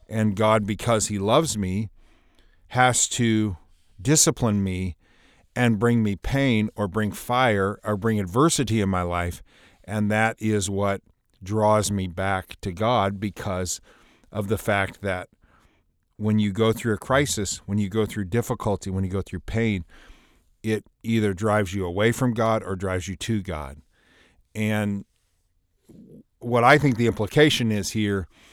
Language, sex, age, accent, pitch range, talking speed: English, male, 40-59, American, 95-115 Hz, 155 wpm